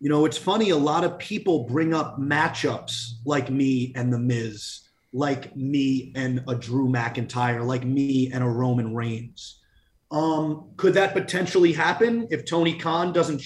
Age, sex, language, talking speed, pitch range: 30-49, male, English, 165 wpm, 145-225 Hz